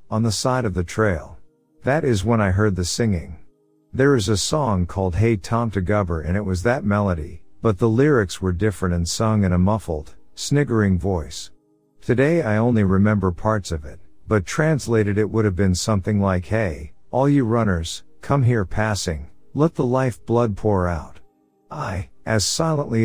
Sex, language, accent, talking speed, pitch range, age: male, English, American, 180 wpm, 90-115 Hz, 50-69